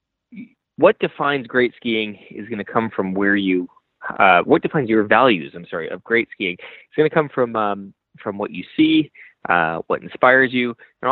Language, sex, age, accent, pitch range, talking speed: English, male, 30-49, American, 100-135 Hz, 200 wpm